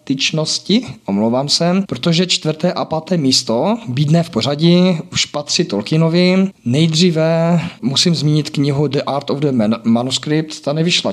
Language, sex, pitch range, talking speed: Slovak, male, 130-155 Hz, 140 wpm